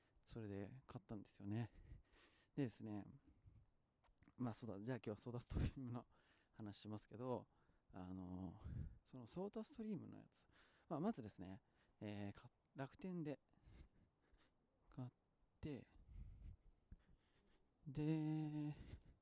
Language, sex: Japanese, male